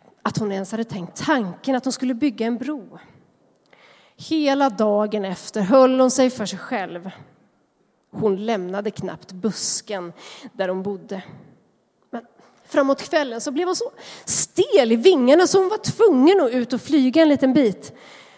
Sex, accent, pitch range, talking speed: female, native, 215-305 Hz, 160 wpm